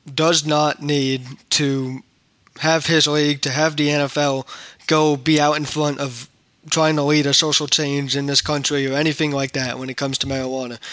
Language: English